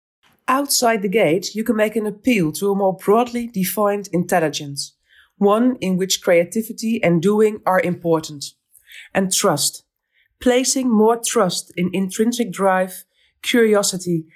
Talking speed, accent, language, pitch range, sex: 130 wpm, Dutch, English, 160-205 Hz, female